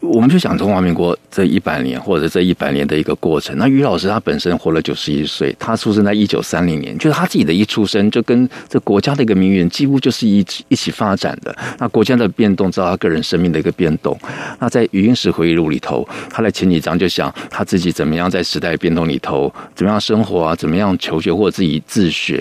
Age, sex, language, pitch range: 50-69, male, Chinese, 85-110 Hz